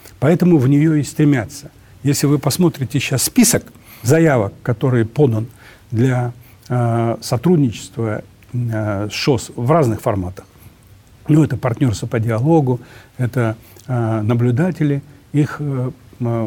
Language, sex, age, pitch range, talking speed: Russian, male, 60-79, 110-140 Hz, 115 wpm